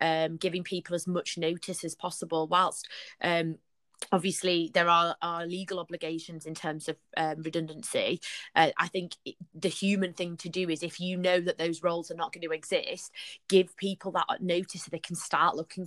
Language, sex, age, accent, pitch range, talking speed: English, female, 20-39, British, 165-185 Hz, 190 wpm